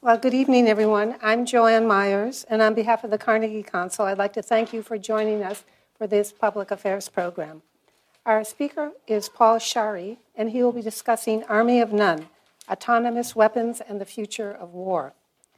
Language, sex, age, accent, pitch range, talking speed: English, female, 60-79, American, 200-230 Hz, 180 wpm